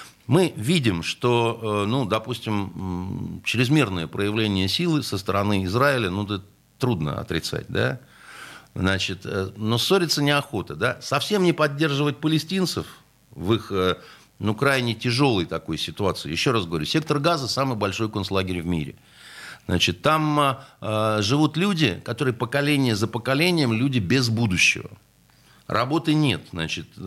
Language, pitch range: Russian, 105-140 Hz